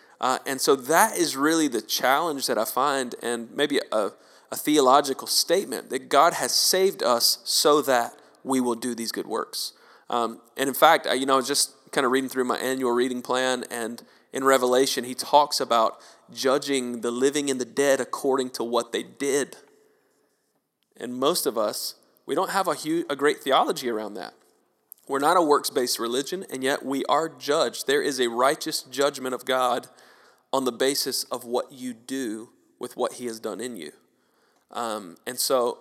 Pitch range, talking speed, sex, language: 120-145 Hz, 190 wpm, male, English